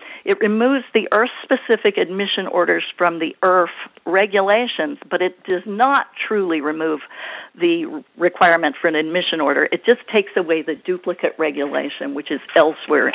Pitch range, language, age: 165-225 Hz, English, 50-69